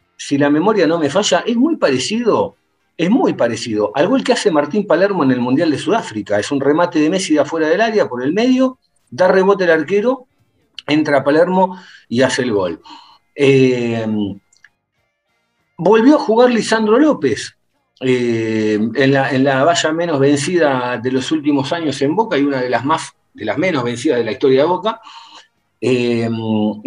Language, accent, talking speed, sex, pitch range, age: Spanish, Argentinian, 180 wpm, male, 125-185 Hz, 50-69